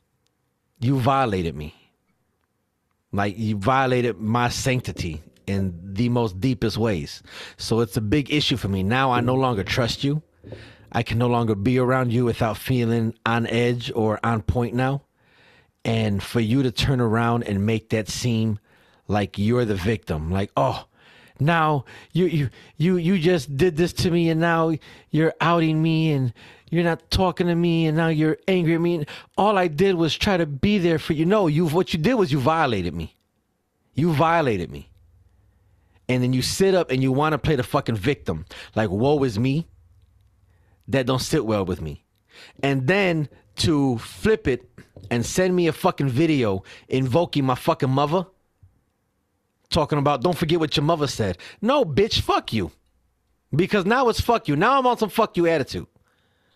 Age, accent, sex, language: 30-49, American, male, English